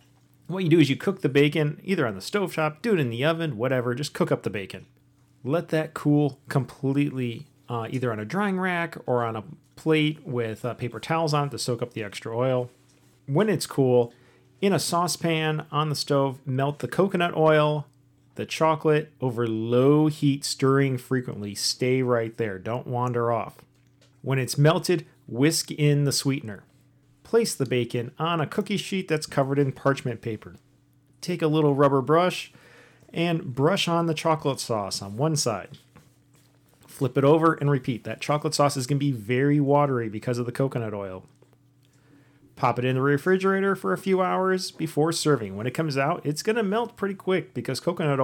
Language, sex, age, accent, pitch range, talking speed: English, male, 40-59, American, 125-155 Hz, 185 wpm